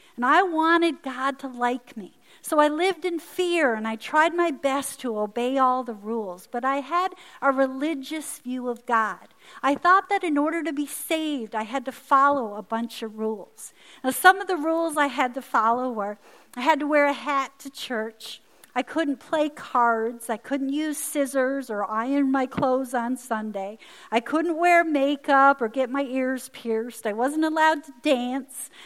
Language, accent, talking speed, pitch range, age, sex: Russian, American, 190 wpm, 235-300 Hz, 50-69, female